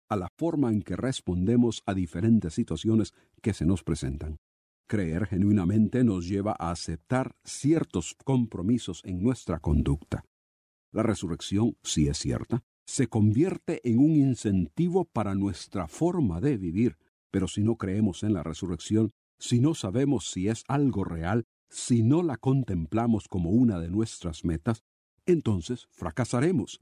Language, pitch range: Spanish, 85-120 Hz